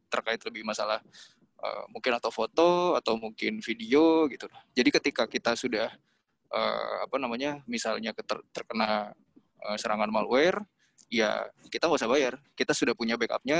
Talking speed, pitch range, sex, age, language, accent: 145 wpm, 115-155 Hz, male, 20-39, Indonesian, native